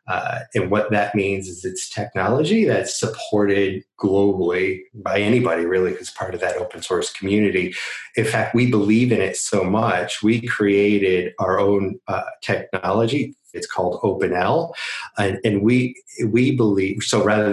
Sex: male